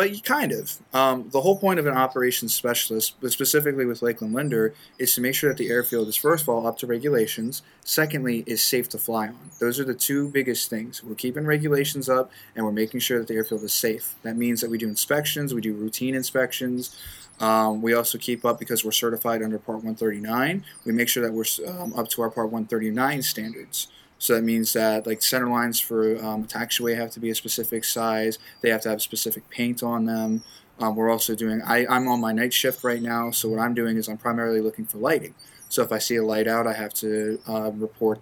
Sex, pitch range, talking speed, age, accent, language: male, 110-125 Hz, 230 wpm, 20-39, American, English